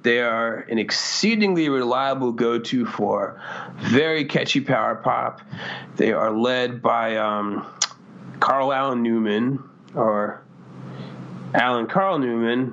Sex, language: male, English